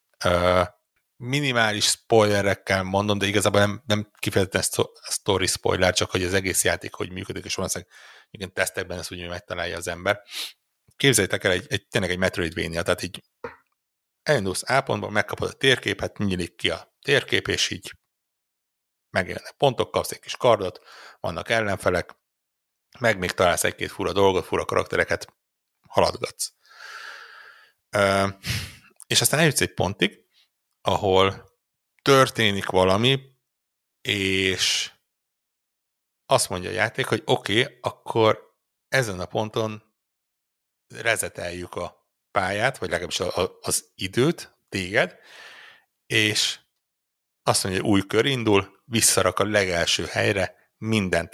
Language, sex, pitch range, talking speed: Hungarian, male, 90-115 Hz, 125 wpm